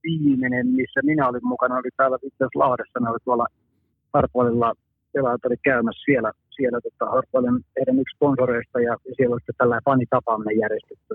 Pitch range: 120-135 Hz